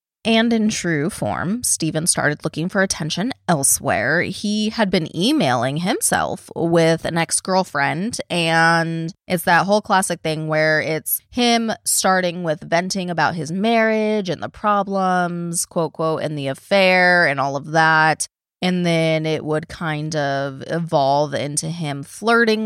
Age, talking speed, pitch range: 20-39, 145 wpm, 155-185 Hz